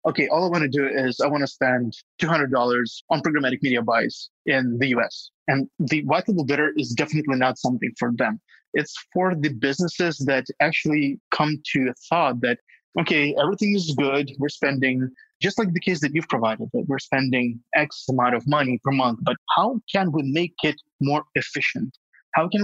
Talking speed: 195 wpm